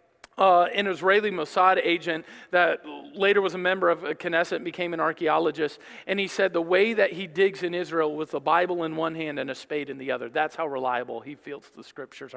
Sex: male